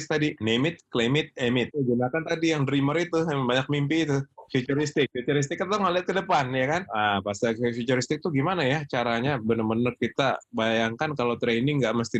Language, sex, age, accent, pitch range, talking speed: Indonesian, male, 20-39, native, 125-160 Hz, 175 wpm